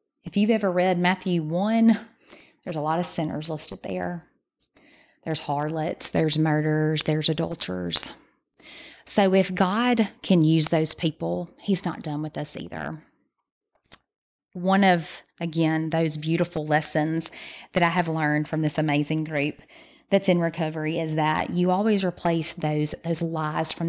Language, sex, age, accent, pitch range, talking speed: English, female, 30-49, American, 155-185 Hz, 145 wpm